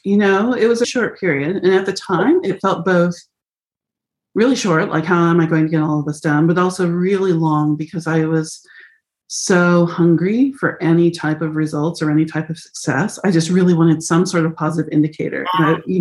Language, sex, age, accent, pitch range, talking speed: English, female, 30-49, American, 160-195 Hz, 210 wpm